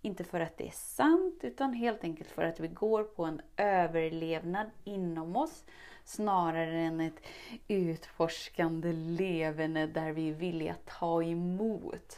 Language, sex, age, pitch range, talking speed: Swedish, female, 30-49, 170-230 Hz, 145 wpm